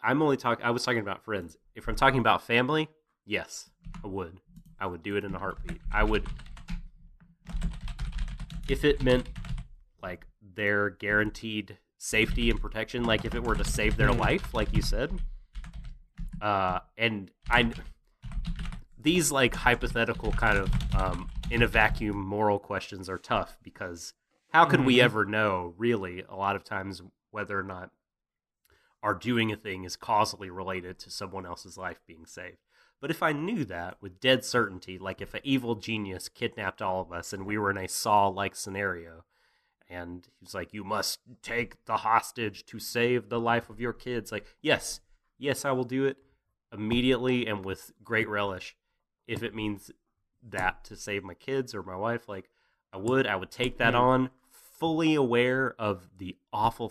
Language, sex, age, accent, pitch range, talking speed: English, male, 30-49, American, 95-125 Hz, 170 wpm